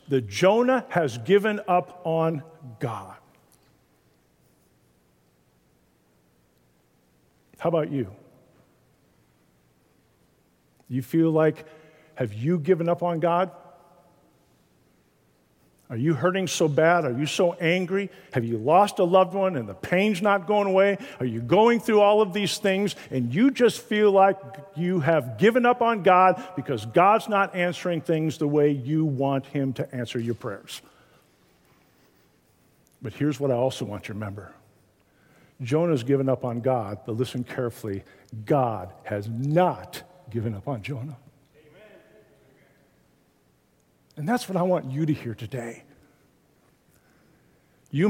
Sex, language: male, English